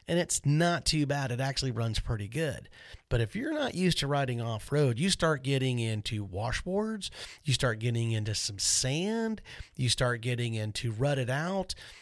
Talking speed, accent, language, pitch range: 175 wpm, American, English, 115-150 Hz